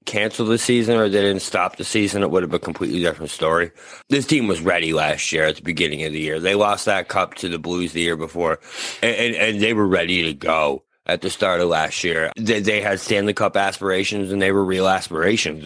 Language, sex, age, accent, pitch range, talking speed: English, male, 30-49, American, 90-110 Hz, 245 wpm